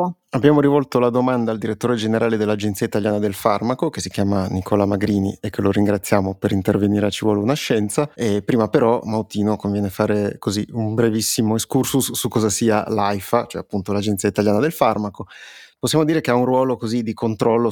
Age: 30-49